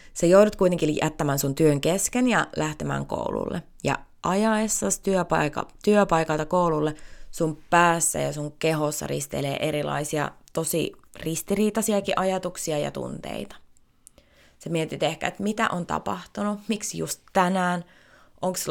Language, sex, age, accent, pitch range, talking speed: Finnish, female, 20-39, native, 145-175 Hz, 120 wpm